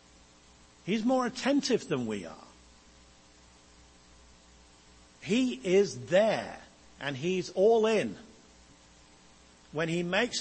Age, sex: 50-69, male